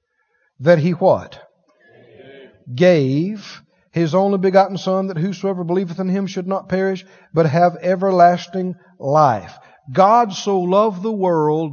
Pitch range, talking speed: 155-195 Hz, 130 wpm